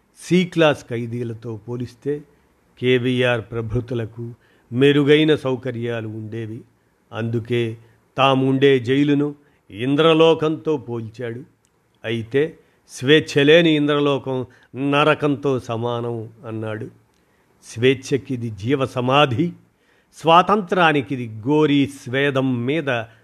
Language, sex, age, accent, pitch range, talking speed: Telugu, male, 50-69, native, 115-140 Hz, 70 wpm